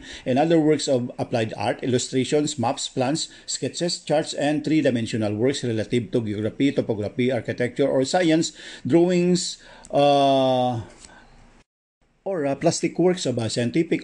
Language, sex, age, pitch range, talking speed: English, male, 50-69, 120-150 Hz, 125 wpm